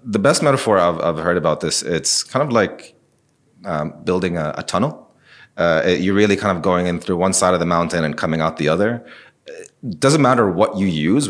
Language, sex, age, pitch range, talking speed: English, male, 30-49, 85-110 Hz, 220 wpm